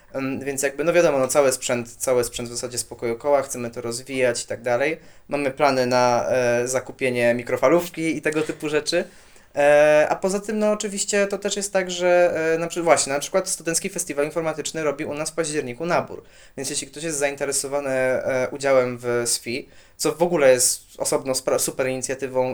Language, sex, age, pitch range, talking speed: Polish, male, 20-39, 125-165 Hz, 190 wpm